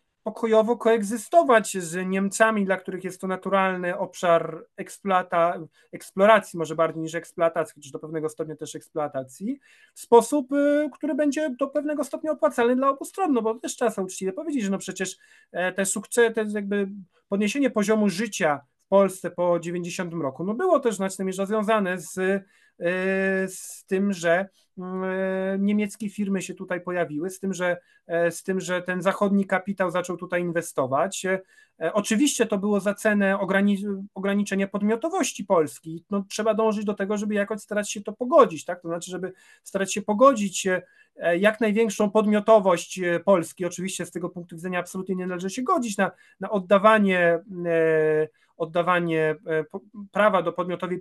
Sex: male